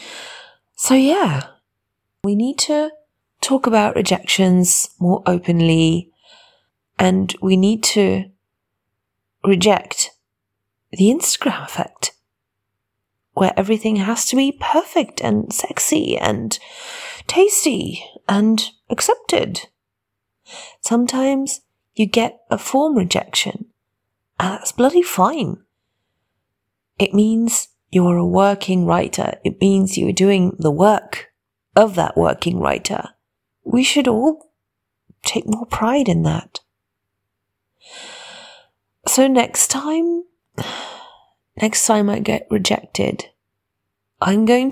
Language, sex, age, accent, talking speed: English, female, 40-59, British, 100 wpm